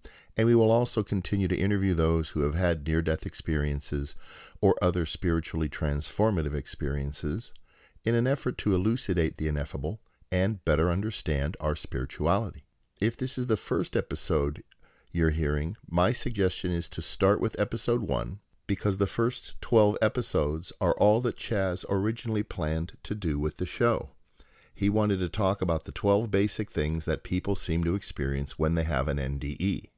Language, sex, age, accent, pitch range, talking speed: English, male, 50-69, American, 80-100 Hz, 160 wpm